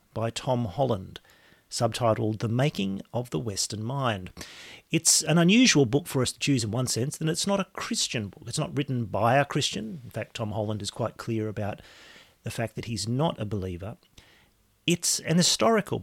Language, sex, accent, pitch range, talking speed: English, male, Australian, 110-145 Hz, 190 wpm